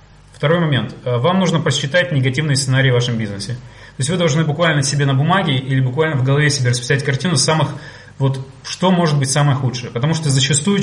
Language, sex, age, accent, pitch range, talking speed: Russian, male, 30-49, native, 125-150 Hz, 195 wpm